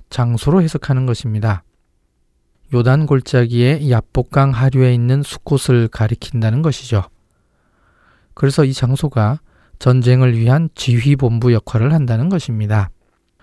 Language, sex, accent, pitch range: Korean, male, native, 110-140 Hz